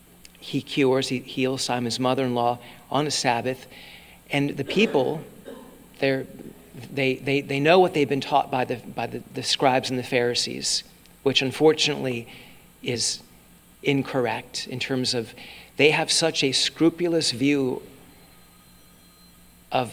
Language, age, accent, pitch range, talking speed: English, 40-59, American, 120-145 Hz, 130 wpm